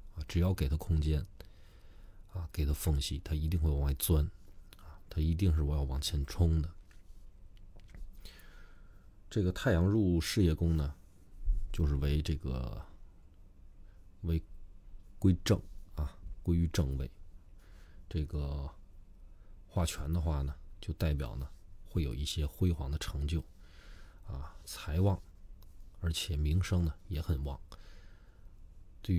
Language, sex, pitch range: Chinese, male, 75-90 Hz